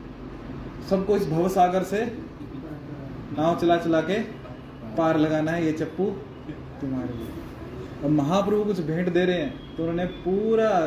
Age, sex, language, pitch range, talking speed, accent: 20-39, male, Hindi, 135-180 Hz, 135 wpm, native